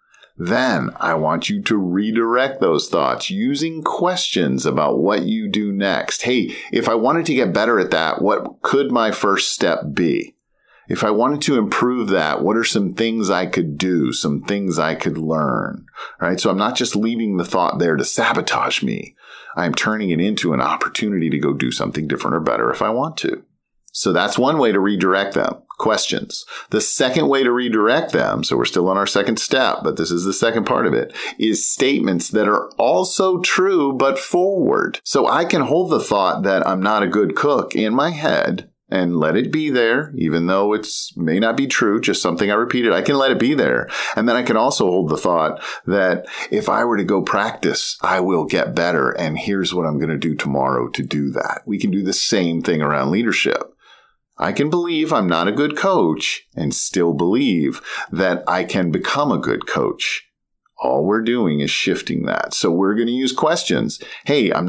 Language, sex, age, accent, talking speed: English, male, 40-59, American, 205 wpm